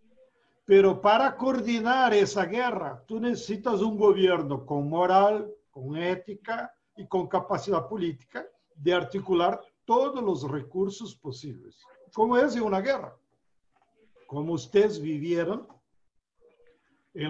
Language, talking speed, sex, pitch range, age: Spanish, 110 wpm, male, 165-235 Hz, 60-79